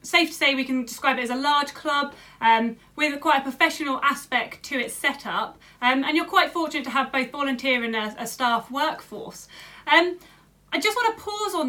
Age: 30-49